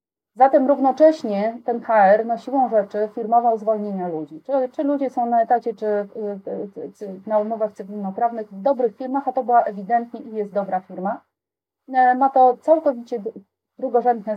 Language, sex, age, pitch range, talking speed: Polish, female, 30-49, 185-250 Hz, 145 wpm